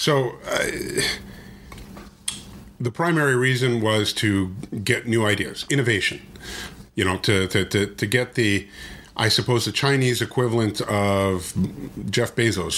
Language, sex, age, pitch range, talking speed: English, male, 50-69, 95-115 Hz, 125 wpm